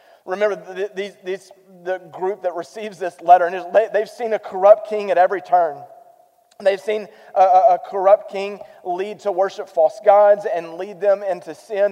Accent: American